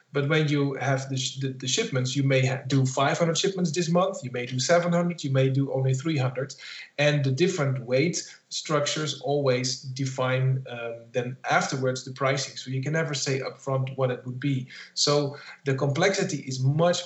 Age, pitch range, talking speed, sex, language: 40-59, 130-155 Hz, 185 wpm, male, English